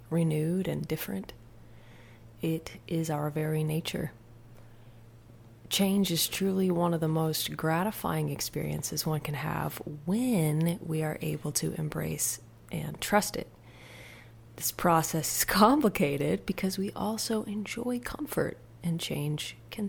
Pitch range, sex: 125-170 Hz, female